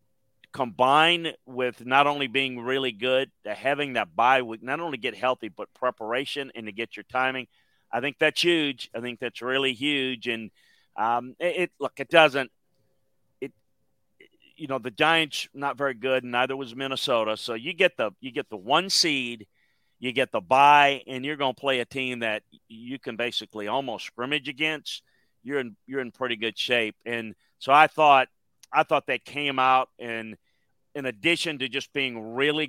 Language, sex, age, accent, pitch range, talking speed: English, male, 40-59, American, 115-140 Hz, 180 wpm